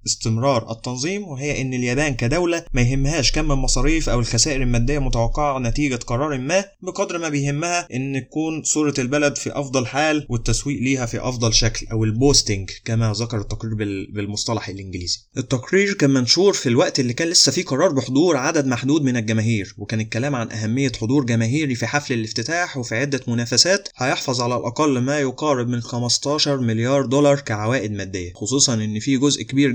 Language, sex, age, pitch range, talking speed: Arabic, male, 20-39, 110-140 Hz, 165 wpm